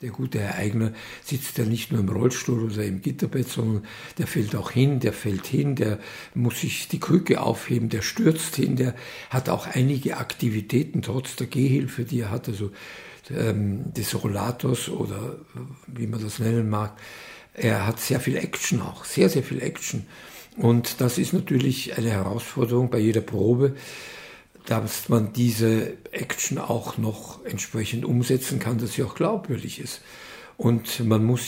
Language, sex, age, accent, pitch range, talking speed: German, male, 60-79, German, 110-135 Hz, 165 wpm